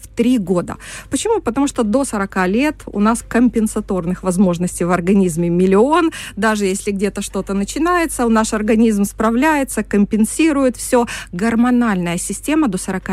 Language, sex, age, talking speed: Russian, female, 20-39, 135 wpm